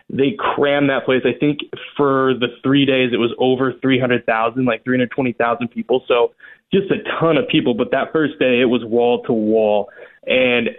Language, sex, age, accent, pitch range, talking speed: English, male, 20-39, American, 125-150 Hz, 215 wpm